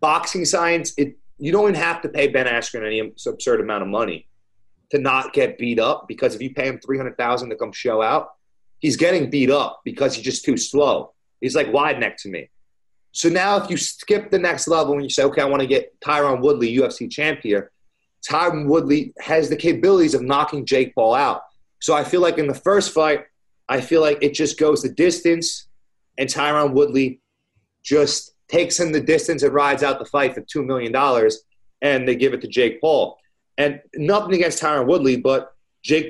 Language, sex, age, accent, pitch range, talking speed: English, male, 30-49, American, 130-170 Hz, 205 wpm